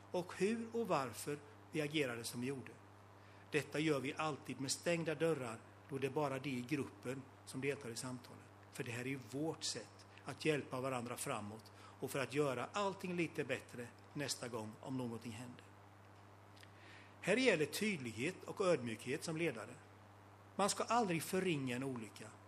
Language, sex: Swedish, male